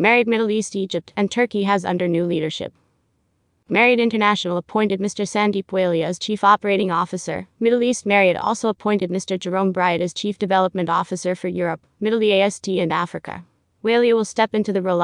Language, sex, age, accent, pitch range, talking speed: English, female, 20-39, American, 180-215 Hz, 175 wpm